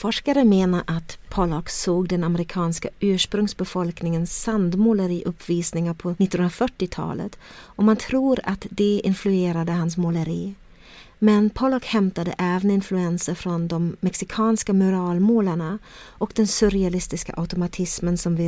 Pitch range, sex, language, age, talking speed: 175-210 Hz, female, Swedish, 40-59, 110 wpm